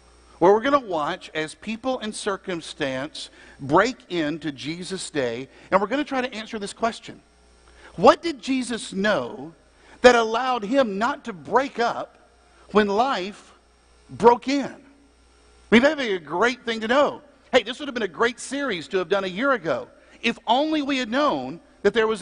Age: 50-69